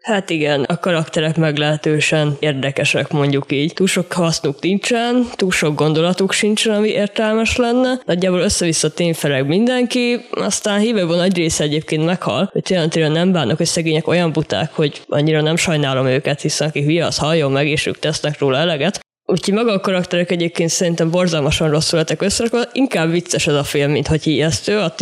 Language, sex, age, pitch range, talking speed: Hungarian, female, 20-39, 150-175 Hz, 170 wpm